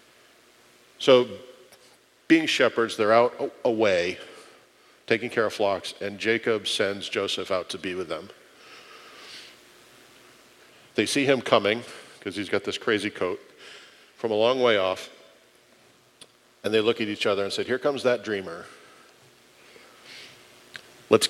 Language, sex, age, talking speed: English, male, 50-69, 130 wpm